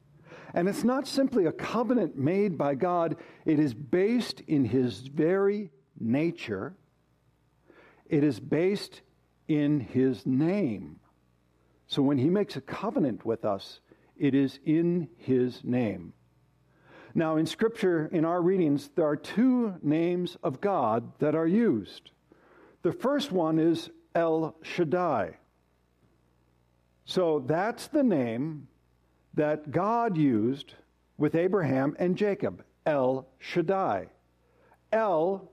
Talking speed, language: 120 wpm, English